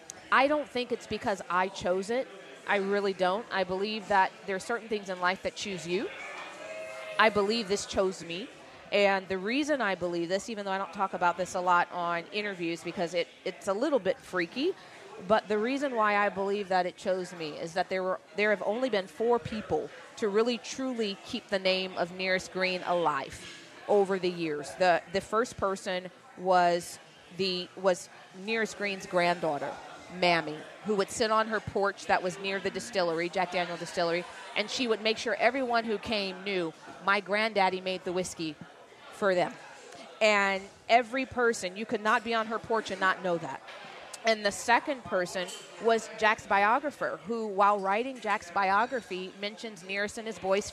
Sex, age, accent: female, 30-49, American